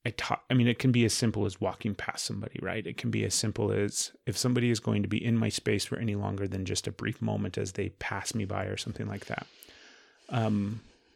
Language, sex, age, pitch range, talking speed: English, male, 30-49, 105-125 Hz, 255 wpm